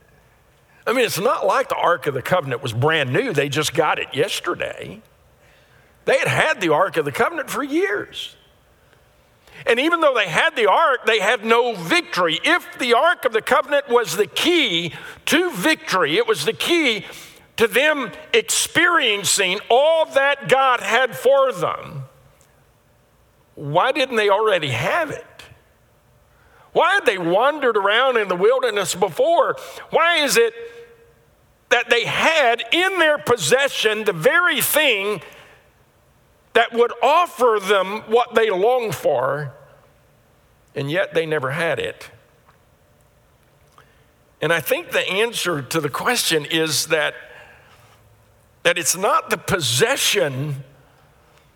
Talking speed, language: 140 wpm, English